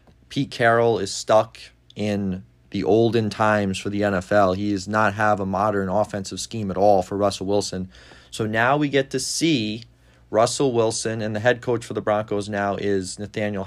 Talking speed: 185 wpm